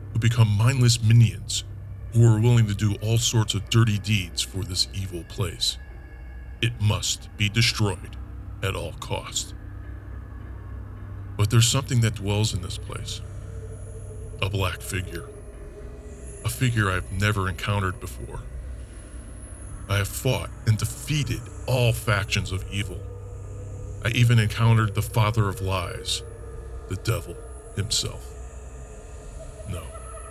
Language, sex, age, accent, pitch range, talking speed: English, male, 40-59, American, 95-110 Hz, 125 wpm